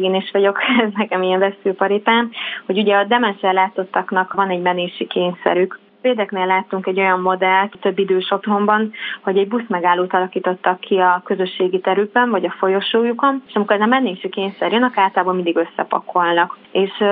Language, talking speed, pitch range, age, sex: Hungarian, 160 wpm, 185-210 Hz, 20-39, female